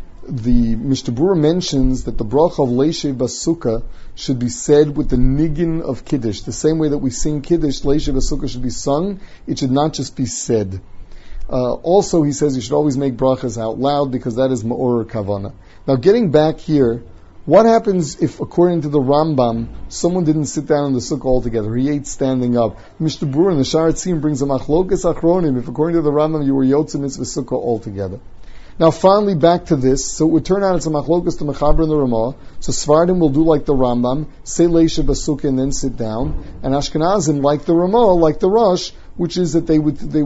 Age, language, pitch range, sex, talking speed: 30-49, English, 125-160 Hz, male, 205 wpm